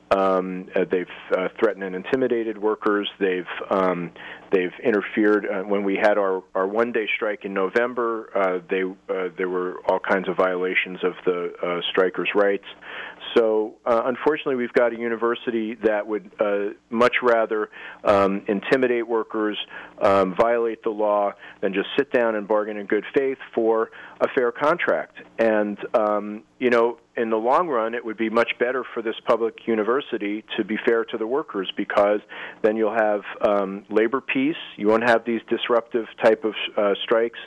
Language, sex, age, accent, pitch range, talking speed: English, male, 40-59, American, 100-120 Hz, 175 wpm